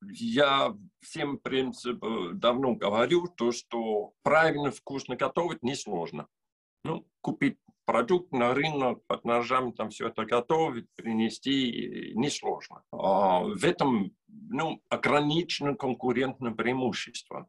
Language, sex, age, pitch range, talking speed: Russian, male, 50-69, 115-145 Hz, 110 wpm